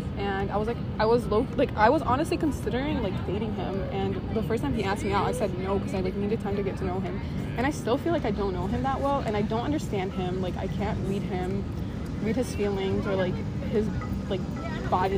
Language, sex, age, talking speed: English, female, 20-39, 255 wpm